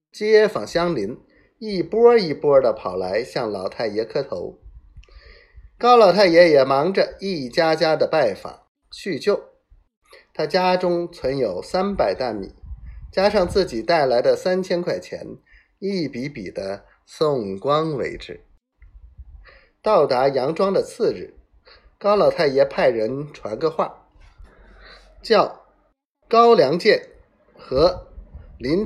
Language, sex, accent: Chinese, male, native